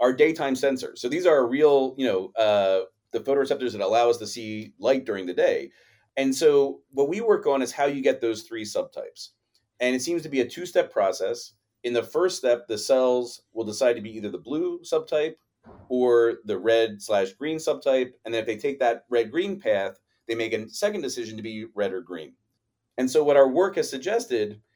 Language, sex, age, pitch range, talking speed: English, male, 30-49, 110-150 Hz, 215 wpm